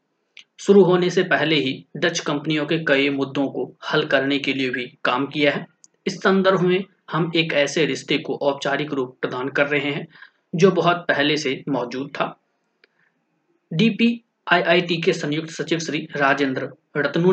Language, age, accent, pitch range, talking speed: Hindi, 30-49, native, 140-175 Hz, 65 wpm